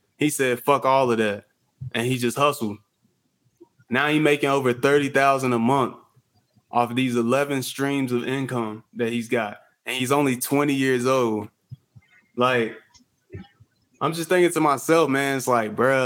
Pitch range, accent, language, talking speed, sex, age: 120-140 Hz, American, English, 165 wpm, male, 20-39